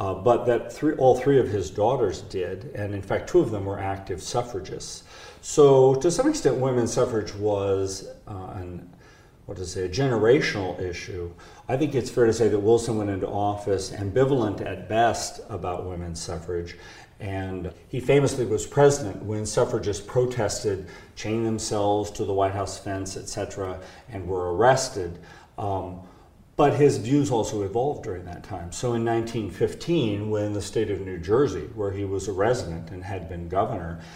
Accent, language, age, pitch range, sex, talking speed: American, English, 40-59, 95-115 Hz, male, 170 wpm